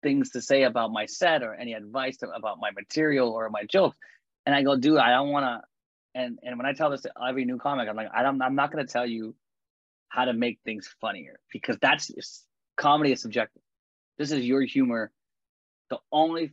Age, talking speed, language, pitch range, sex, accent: 20-39, 220 wpm, English, 120-145 Hz, male, American